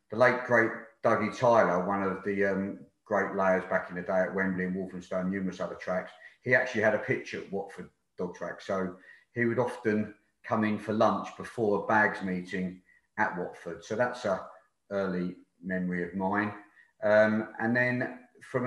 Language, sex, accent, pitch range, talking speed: English, male, British, 100-115 Hz, 180 wpm